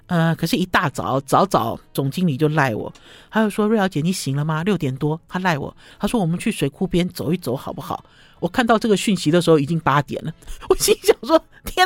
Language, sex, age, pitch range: Chinese, male, 50-69, 160-235 Hz